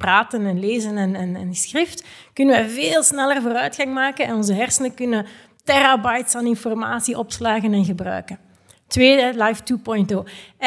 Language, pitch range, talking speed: Dutch, 210-260 Hz, 145 wpm